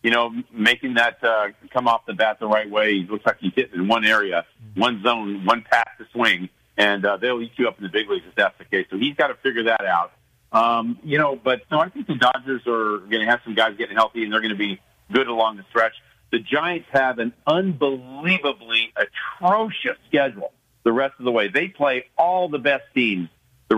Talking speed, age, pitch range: 230 wpm, 50-69, 110-140 Hz